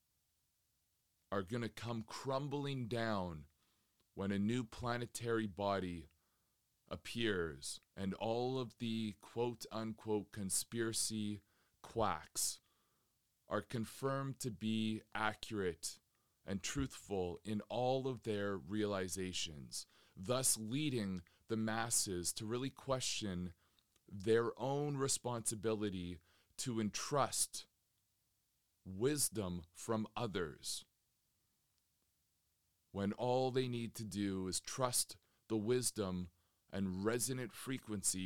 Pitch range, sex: 95-125 Hz, male